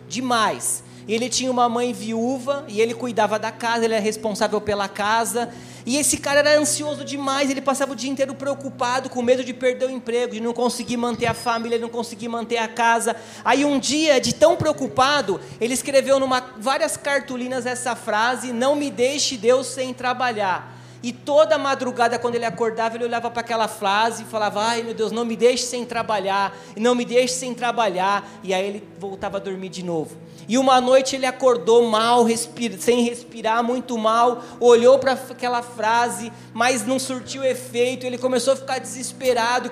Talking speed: 185 wpm